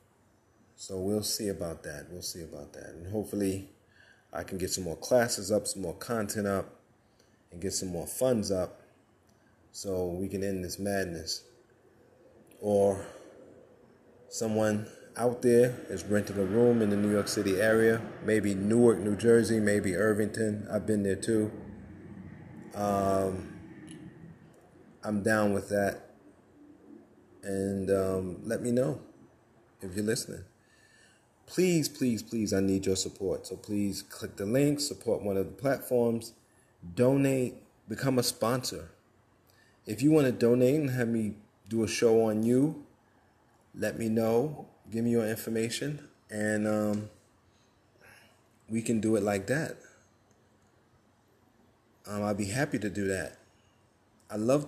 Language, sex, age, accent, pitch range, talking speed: English, male, 30-49, American, 100-115 Hz, 145 wpm